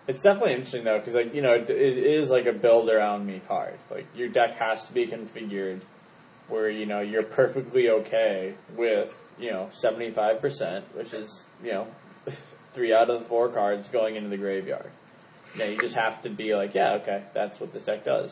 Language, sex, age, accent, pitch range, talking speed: English, male, 20-39, American, 105-125 Hz, 195 wpm